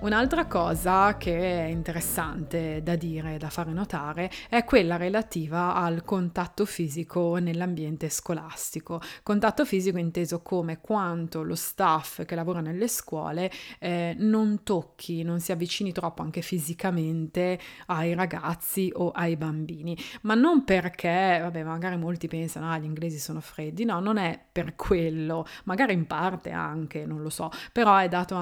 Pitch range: 165-185 Hz